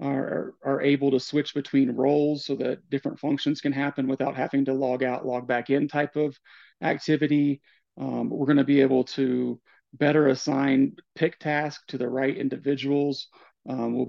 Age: 40-59